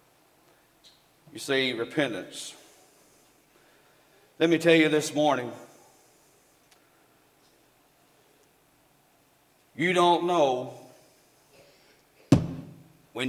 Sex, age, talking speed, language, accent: male, 50-69, 60 wpm, English, American